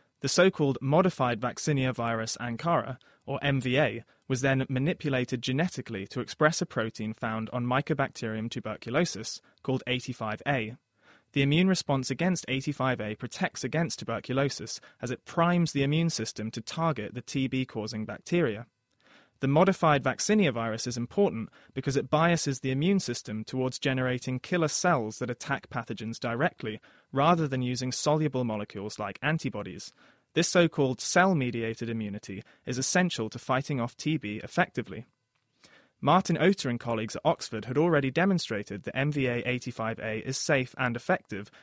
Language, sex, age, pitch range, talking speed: English, male, 20-39, 115-150 Hz, 135 wpm